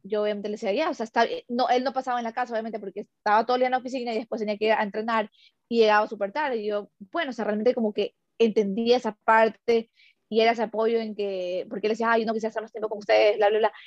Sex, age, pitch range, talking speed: female, 20-39, 210-250 Hz, 290 wpm